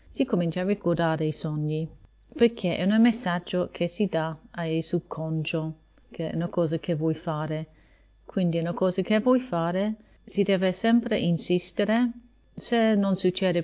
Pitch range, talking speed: 165-205 Hz, 160 wpm